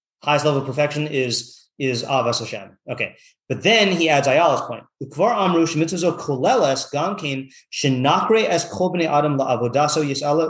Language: English